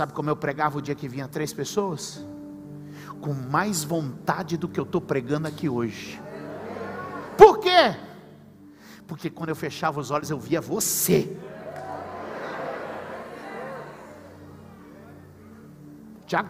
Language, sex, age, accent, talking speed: Portuguese, male, 50-69, Brazilian, 115 wpm